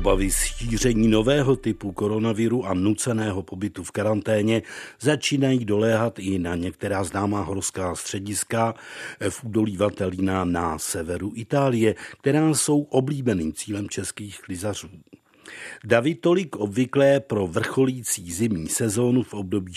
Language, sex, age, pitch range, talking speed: Czech, male, 50-69, 100-125 Hz, 115 wpm